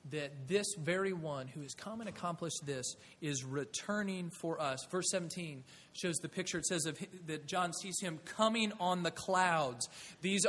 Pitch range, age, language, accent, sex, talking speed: 155-195 Hz, 30-49, English, American, male, 170 wpm